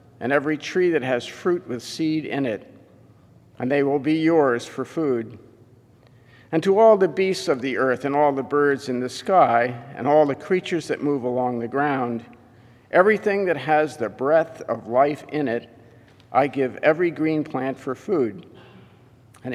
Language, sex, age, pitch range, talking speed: English, male, 50-69, 120-155 Hz, 180 wpm